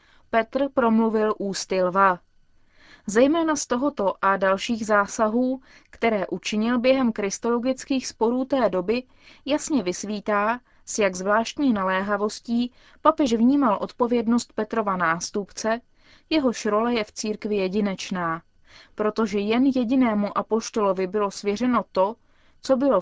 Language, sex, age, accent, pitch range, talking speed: Czech, female, 20-39, native, 200-250 Hz, 110 wpm